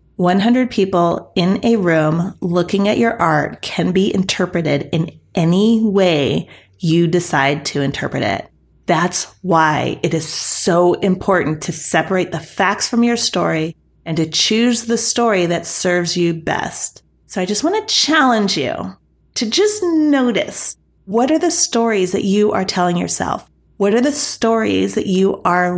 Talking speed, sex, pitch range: 155 wpm, female, 175-235 Hz